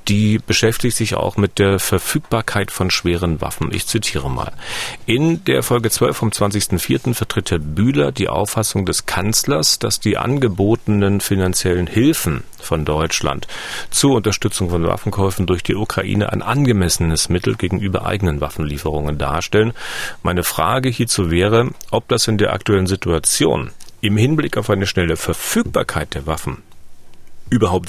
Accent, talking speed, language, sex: German, 140 wpm, German, male